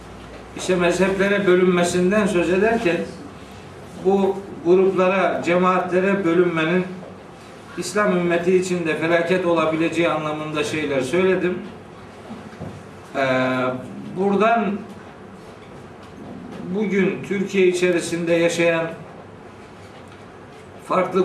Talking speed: 70 wpm